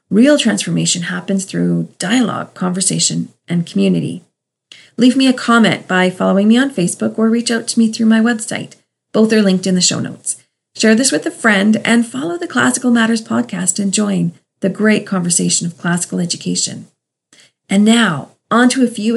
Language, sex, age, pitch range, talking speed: English, female, 40-59, 185-230 Hz, 180 wpm